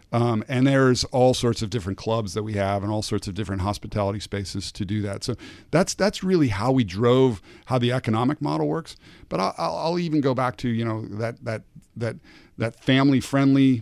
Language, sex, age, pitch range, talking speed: English, male, 50-69, 105-130 Hz, 210 wpm